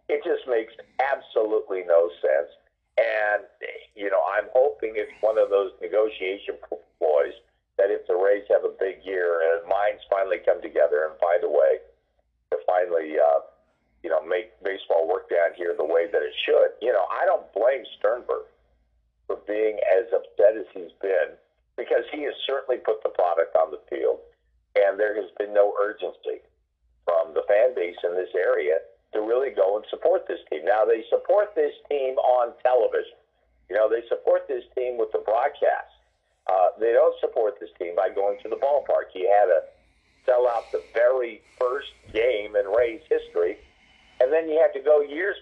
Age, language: 50-69, English